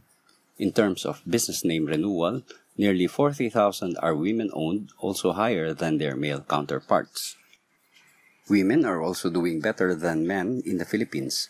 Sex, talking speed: male, 135 wpm